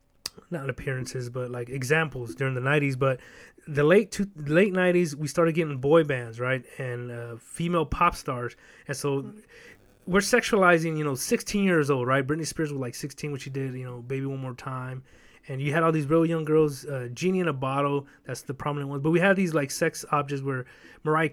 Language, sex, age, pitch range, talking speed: English, male, 30-49, 135-170 Hz, 210 wpm